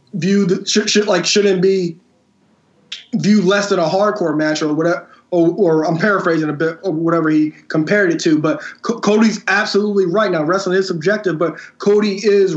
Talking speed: 185 wpm